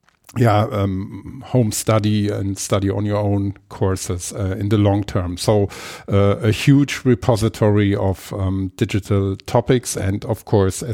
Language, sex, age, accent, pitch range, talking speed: English, male, 50-69, German, 105-125 Hz, 150 wpm